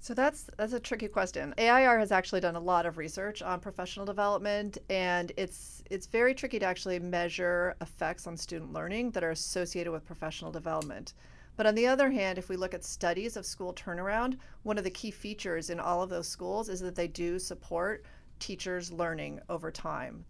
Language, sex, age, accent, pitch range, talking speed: English, female, 40-59, American, 170-205 Hz, 200 wpm